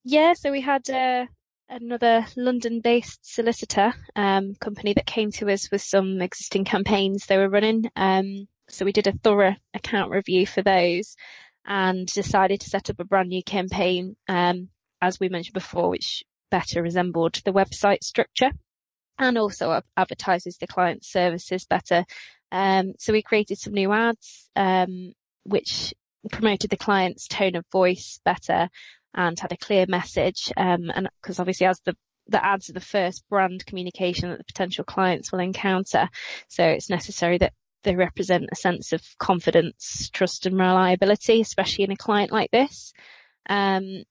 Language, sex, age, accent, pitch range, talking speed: English, female, 20-39, British, 185-210 Hz, 160 wpm